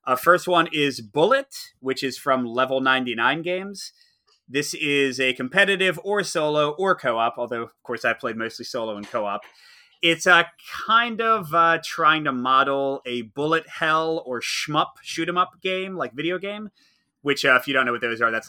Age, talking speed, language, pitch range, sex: 30-49, 185 wpm, English, 120-165 Hz, male